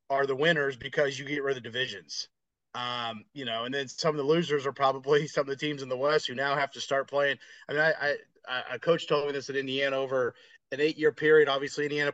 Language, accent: English, American